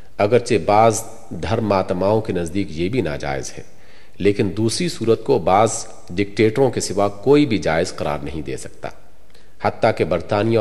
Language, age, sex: Urdu, 50-69, male